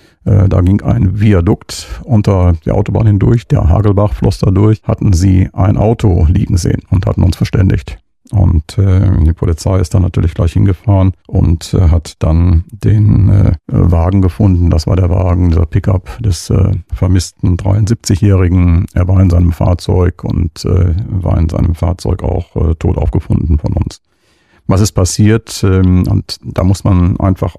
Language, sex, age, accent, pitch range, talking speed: German, male, 50-69, German, 95-105 Hz, 165 wpm